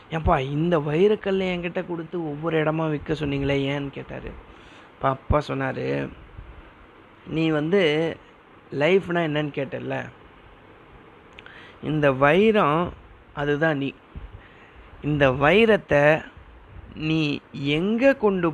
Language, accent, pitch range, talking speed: Tamil, native, 140-165 Hz, 85 wpm